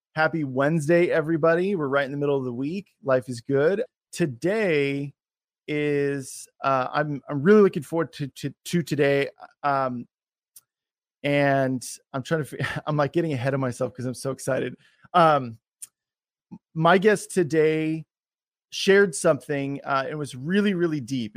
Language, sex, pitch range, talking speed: English, male, 135-165 Hz, 150 wpm